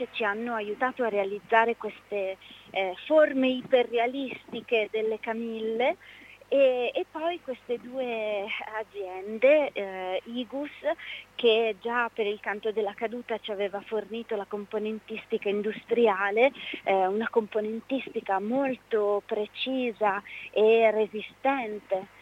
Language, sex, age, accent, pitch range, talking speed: Italian, female, 30-49, native, 205-240 Hz, 105 wpm